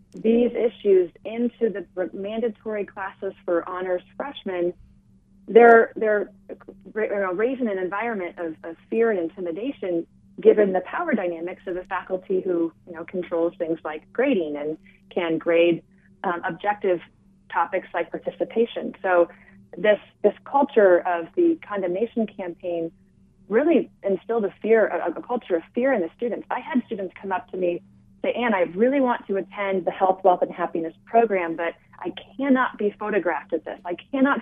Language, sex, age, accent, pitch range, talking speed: English, female, 30-49, American, 170-220 Hz, 160 wpm